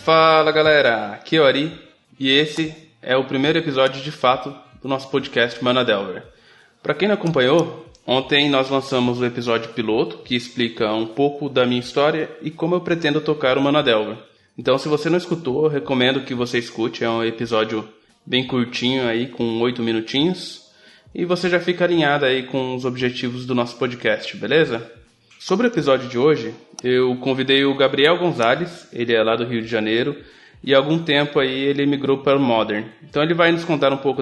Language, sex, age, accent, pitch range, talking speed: Portuguese, male, 20-39, Brazilian, 120-155 Hz, 185 wpm